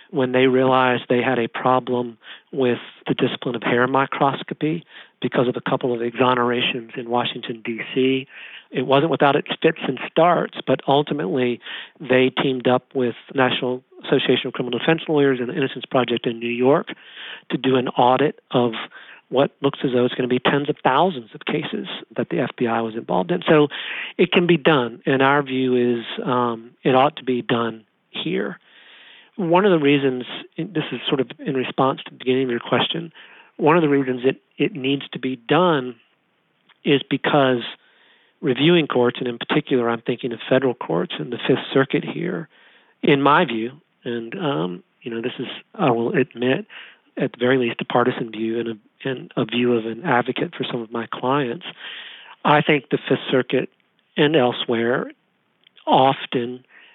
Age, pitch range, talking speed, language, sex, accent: 50-69, 120-140 Hz, 180 wpm, English, male, American